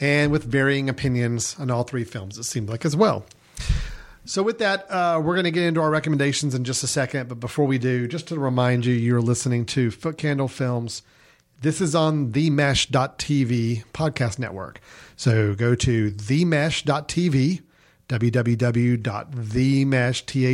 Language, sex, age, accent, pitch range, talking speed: English, male, 40-59, American, 120-155 Hz, 150 wpm